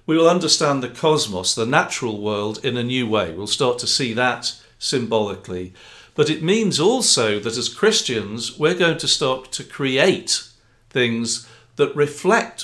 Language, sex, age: English, male, 50-69